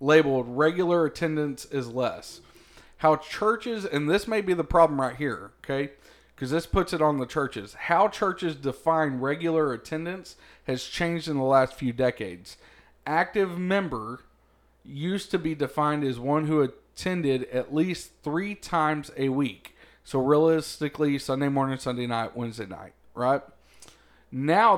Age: 40-59